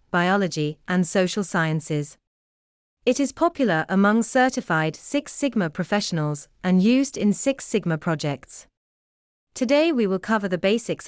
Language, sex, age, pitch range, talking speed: English, female, 30-49, 155-220 Hz, 130 wpm